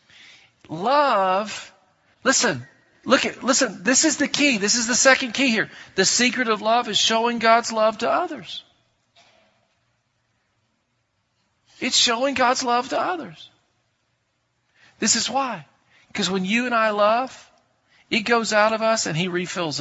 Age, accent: 50-69, American